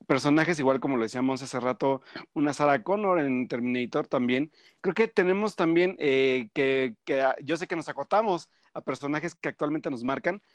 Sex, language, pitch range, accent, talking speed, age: male, Spanish, 130-165 Hz, Mexican, 175 wpm, 40-59